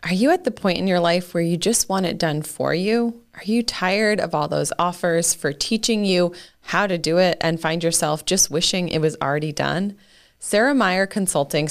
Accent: American